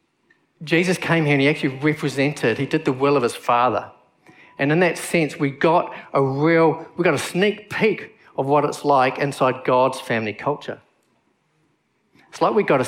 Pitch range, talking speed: 120-155 Hz, 185 wpm